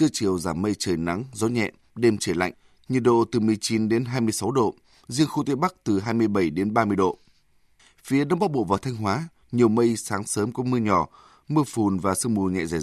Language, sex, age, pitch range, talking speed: Vietnamese, male, 20-39, 105-125 Hz, 225 wpm